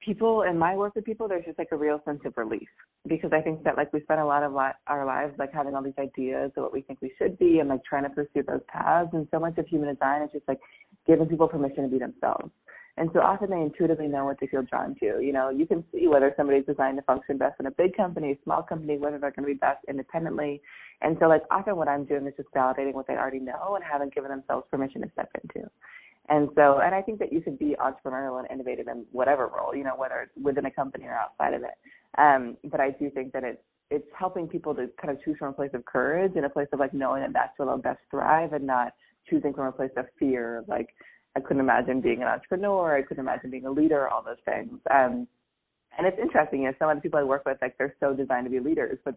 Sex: female